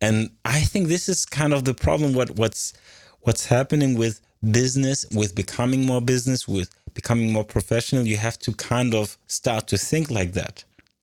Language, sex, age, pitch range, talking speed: English, male, 30-49, 100-130 Hz, 180 wpm